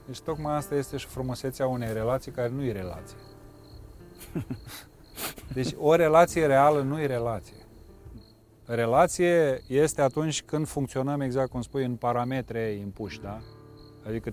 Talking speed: 135 wpm